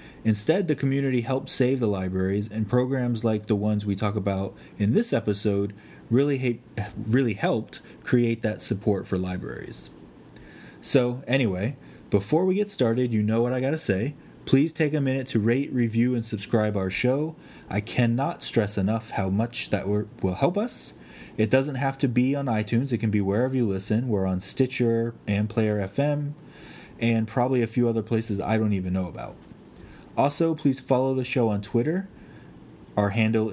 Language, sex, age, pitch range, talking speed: English, male, 30-49, 105-130 Hz, 175 wpm